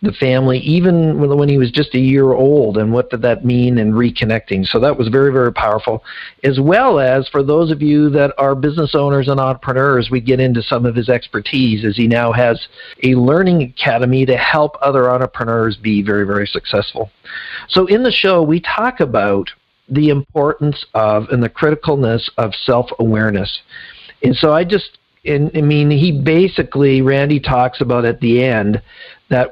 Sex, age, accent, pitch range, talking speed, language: male, 50-69, American, 125-150 Hz, 180 wpm, English